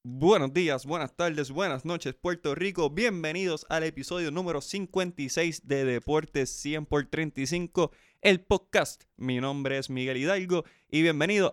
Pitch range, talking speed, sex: 145-180 Hz, 130 wpm, male